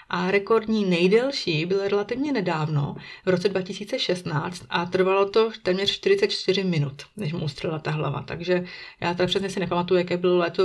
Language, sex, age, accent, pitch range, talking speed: Czech, female, 30-49, native, 170-190 Hz, 165 wpm